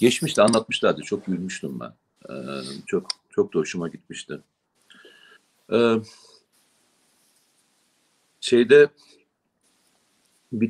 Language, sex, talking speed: Turkish, male, 80 wpm